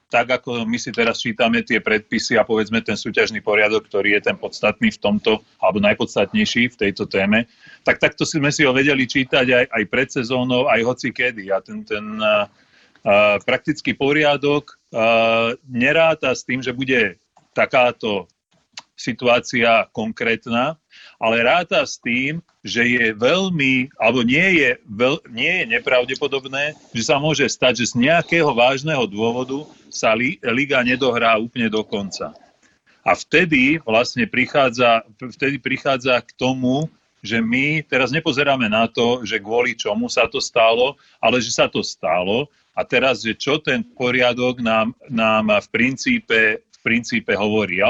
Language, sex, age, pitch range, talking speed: Slovak, male, 40-59, 115-145 Hz, 150 wpm